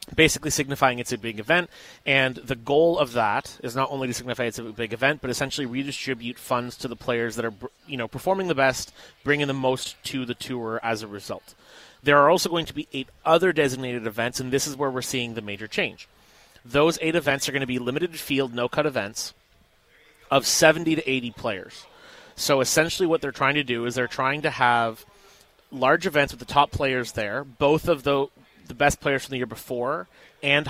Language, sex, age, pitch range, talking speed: English, male, 30-49, 125-150 Hz, 210 wpm